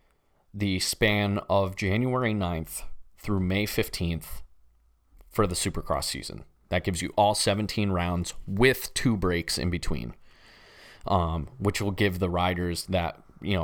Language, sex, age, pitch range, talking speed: English, male, 30-49, 85-105 Hz, 135 wpm